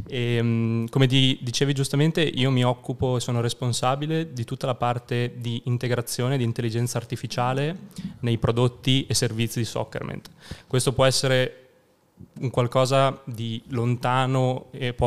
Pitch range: 115-125 Hz